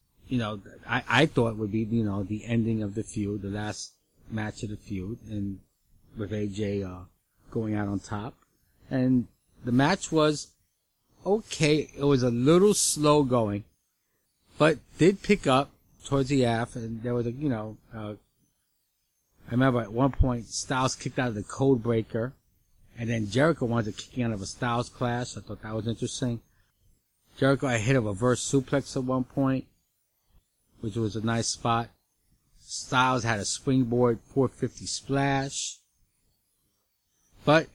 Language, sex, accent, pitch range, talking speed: English, male, American, 110-145 Hz, 165 wpm